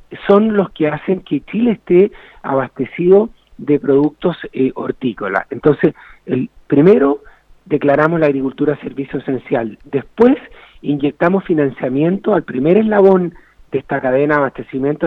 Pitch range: 140-200 Hz